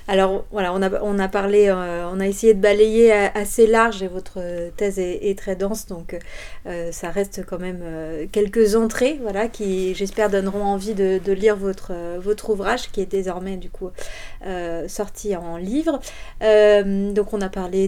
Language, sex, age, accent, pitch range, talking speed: French, female, 30-49, French, 185-215 Hz, 190 wpm